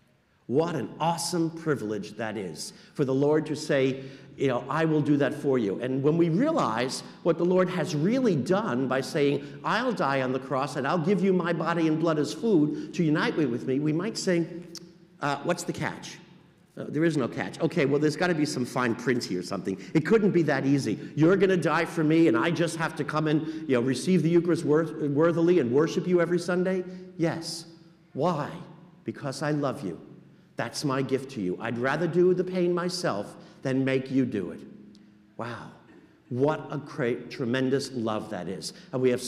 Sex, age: male, 50-69